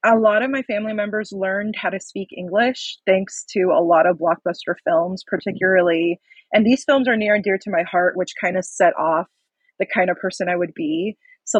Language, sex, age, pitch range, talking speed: English, female, 20-39, 185-220 Hz, 215 wpm